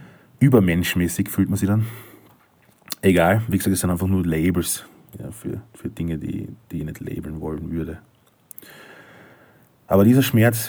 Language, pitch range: German, 90-110 Hz